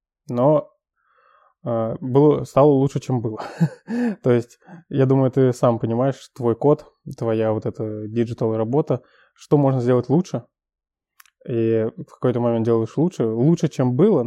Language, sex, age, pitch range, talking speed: Russian, male, 20-39, 115-140 Hz, 140 wpm